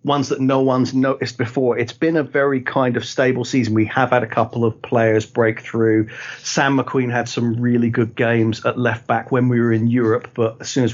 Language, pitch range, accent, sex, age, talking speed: English, 115-135 Hz, British, male, 40-59, 230 wpm